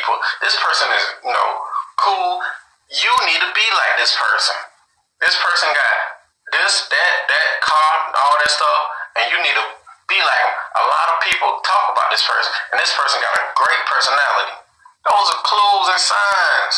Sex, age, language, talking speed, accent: male, 30-49, English, 180 wpm, American